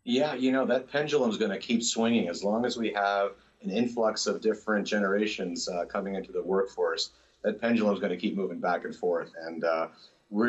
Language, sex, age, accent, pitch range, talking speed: English, male, 40-59, American, 100-145 Hz, 210 wpm